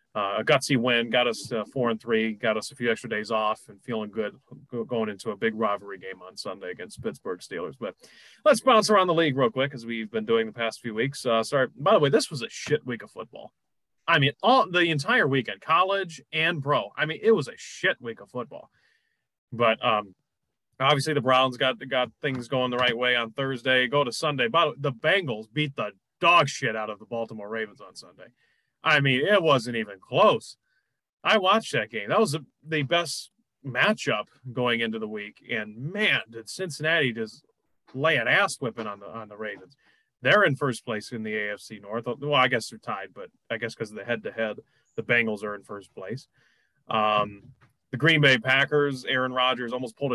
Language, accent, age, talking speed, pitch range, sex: English, American, 30-49, 220 wpm, 115-145 Hz, male